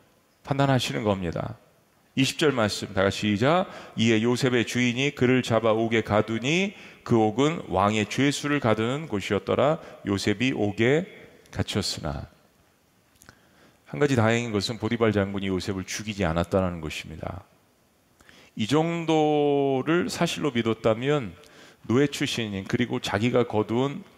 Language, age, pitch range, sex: Korean, 40-59, 105-140 Hz, male